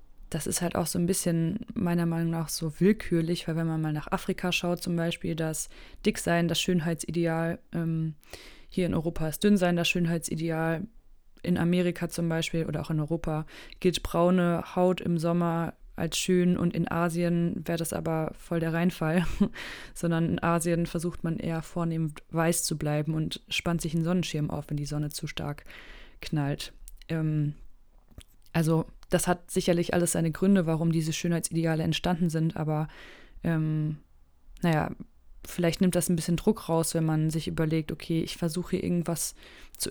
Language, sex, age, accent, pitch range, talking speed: German, female, 20-39, German, 160-175 Hz, 170 wpm